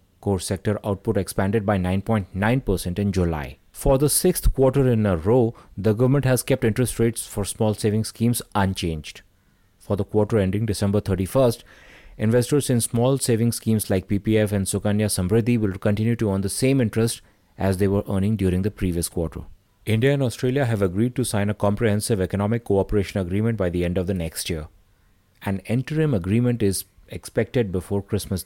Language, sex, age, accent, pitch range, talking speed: English, male, 30-49, Indian, 95-115 Hz, 175 wpm